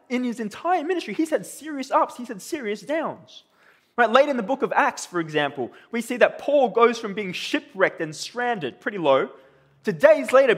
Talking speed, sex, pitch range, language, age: 205 wpm, male, 180-255 Hz, English, 20-39